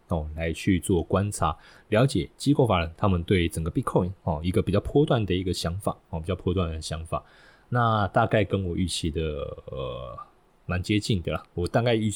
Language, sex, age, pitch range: Chinese, male, 20-39, 85-105 Hz